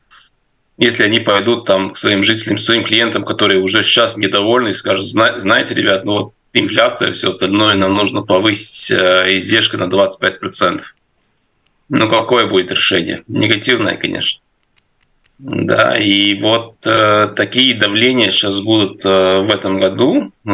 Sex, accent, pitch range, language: male, native, 95-105 Hz, Russian